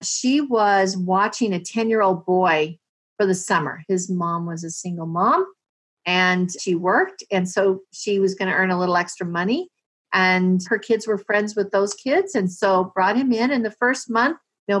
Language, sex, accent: English, female, American